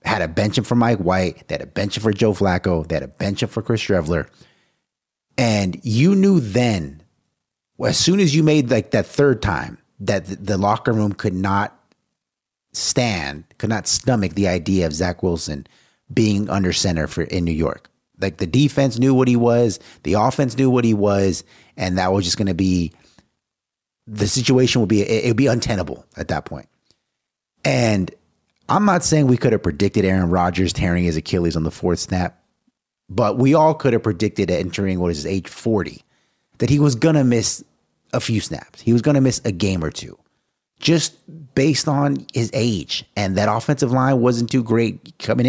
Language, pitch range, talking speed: English, 90-125 Hz, 195 wpm